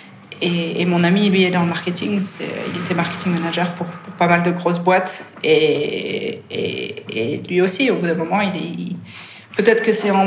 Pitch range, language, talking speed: 175-200 Hz, French, 220 wpm